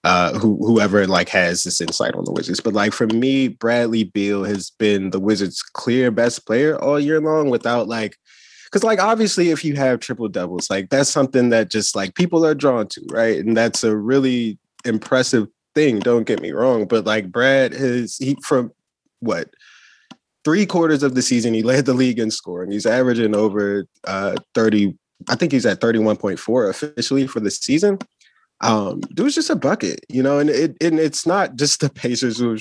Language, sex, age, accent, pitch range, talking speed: English, male, 20-39, American, 105-150 Hz, 200 wpm